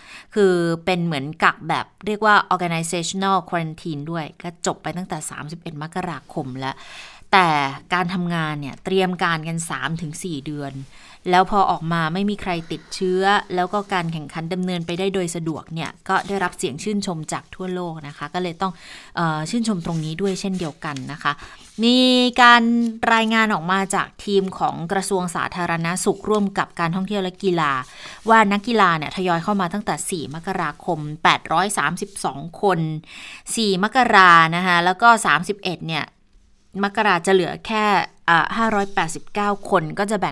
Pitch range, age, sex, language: 165-205 Hz, 20-39, female, Thai